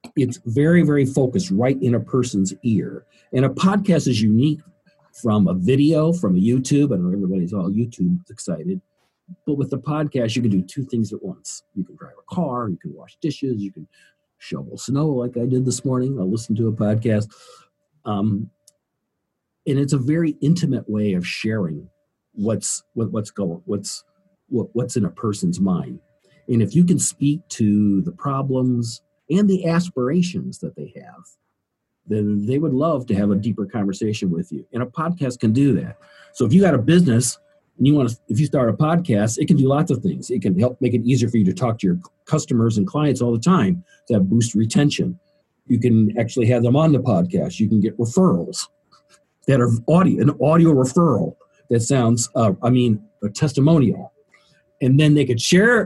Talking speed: 200 wpm